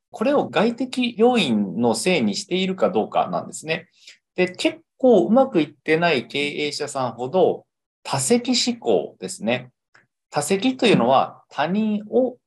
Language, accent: Japanese, native